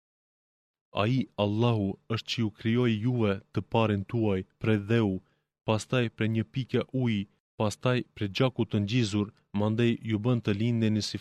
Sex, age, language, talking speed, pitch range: male, 20-39, Greek, 145 wpm, 100-120 Hz